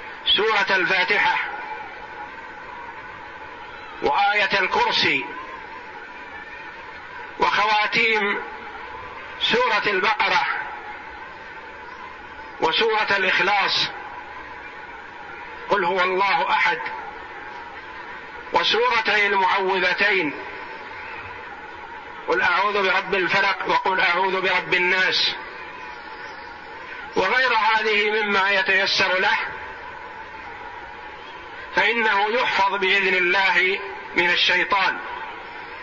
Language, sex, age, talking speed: Arabic, male, 50-69, 55 wpm